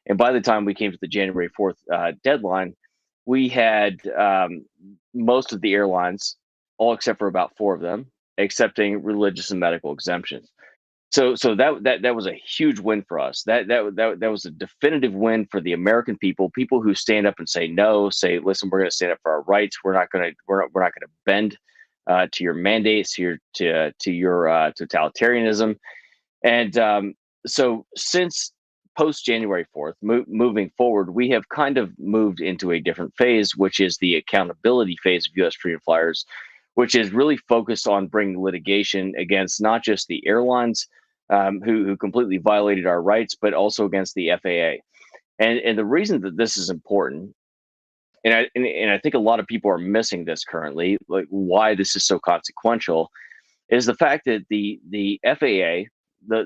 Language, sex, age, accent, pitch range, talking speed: English, male, 30-49, American, 95-115 Hz, 190 wpm